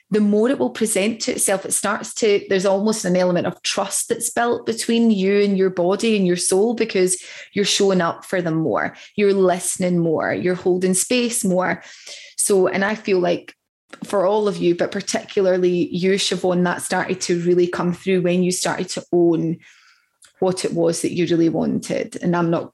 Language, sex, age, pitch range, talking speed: English, female, 20-39, 175-205 Hz, 195 wpm